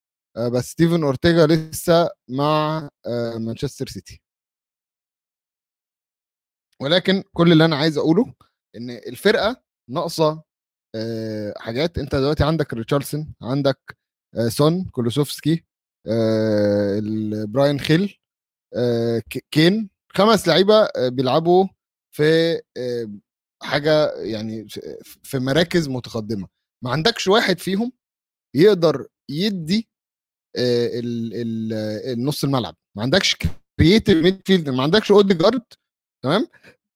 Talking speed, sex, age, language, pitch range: 85 wpm, male, 30-49, Arabic, 120-185 Hz